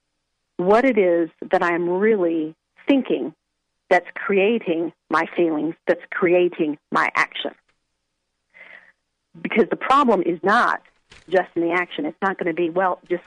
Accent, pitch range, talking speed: American, 165-220 Hz, 140 wpm